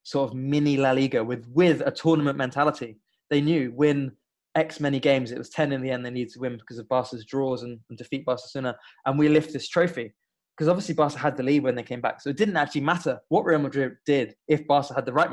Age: 20-39